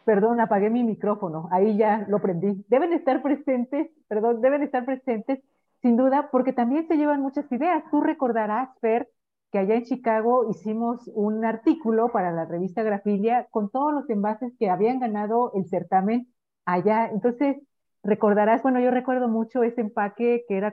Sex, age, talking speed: female, 40-59, 165 wpm